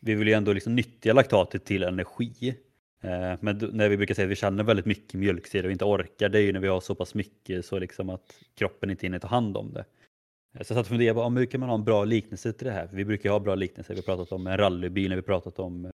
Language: Swedish